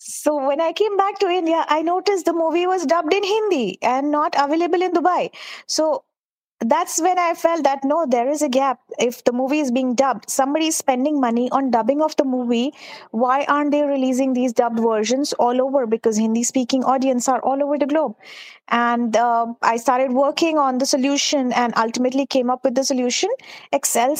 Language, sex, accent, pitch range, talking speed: English, female, Indian, 245-300 Hz, 195 wpm